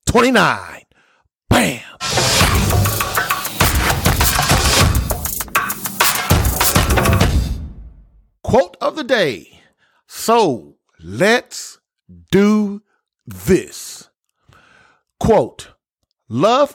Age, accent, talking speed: 40-59, American, 45 wpm